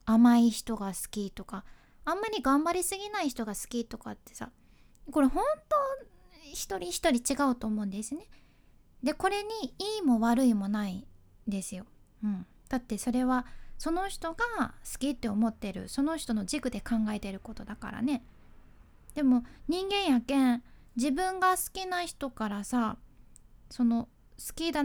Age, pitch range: 20-39, 225-330 Hz